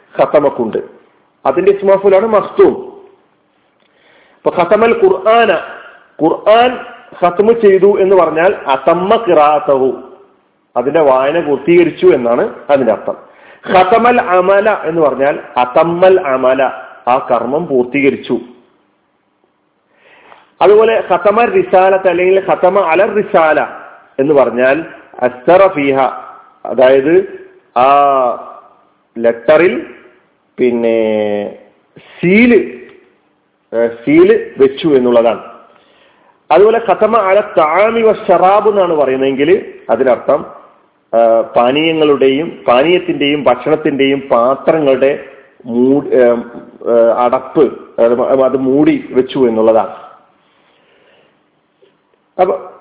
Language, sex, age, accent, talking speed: Malayalam, male, 40-59, native, 75 wpm